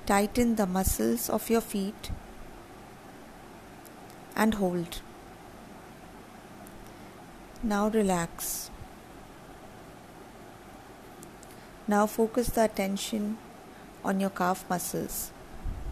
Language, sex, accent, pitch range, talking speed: English, female, Indian, 190-230 Hz, 70 wpm